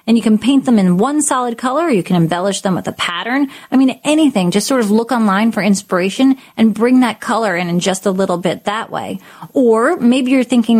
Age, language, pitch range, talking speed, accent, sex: 30-49, English, 195-255 Hz, 240 wpm, American, female